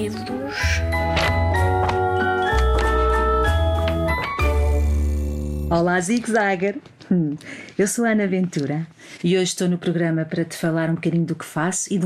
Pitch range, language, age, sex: 150-200 Hz, Portuguese, 40-59, female